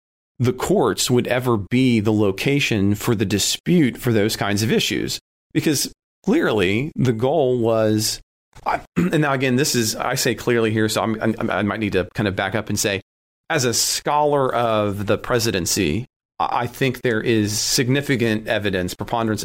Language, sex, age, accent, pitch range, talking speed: English, male, 40-59, American, 100-120 Hz, 165 wpm